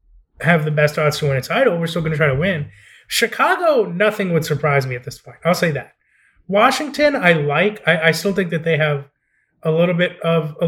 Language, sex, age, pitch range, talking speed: English, male, 20-39, 150-190 Hz, 230 wpm